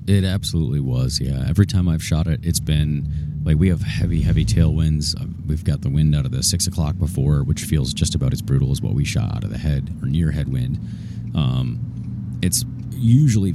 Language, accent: English, American